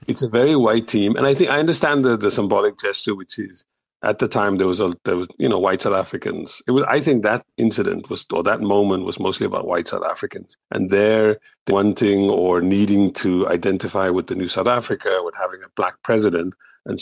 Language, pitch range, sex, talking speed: English, 95-105 Hz, male, 220 wpm